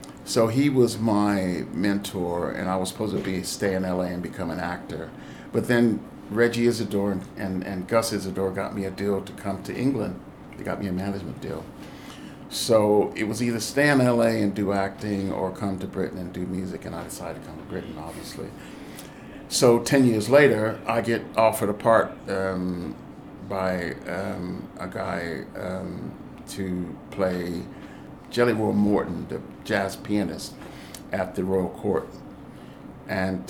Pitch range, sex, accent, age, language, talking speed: 95-115 Hz, male, American, 50-69, English, 170 wpm